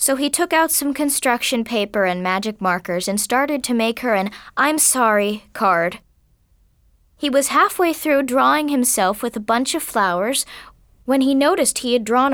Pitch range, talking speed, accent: 205-285 Hz, 175 wpm, American